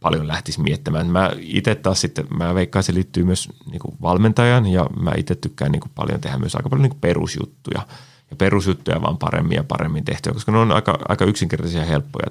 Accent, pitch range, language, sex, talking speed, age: native, 85-130 Hz, Finnish, male, 195 wpm, 30-49